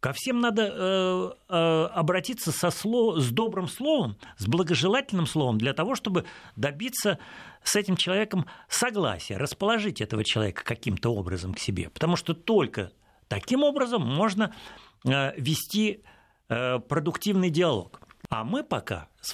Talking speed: 130 wpm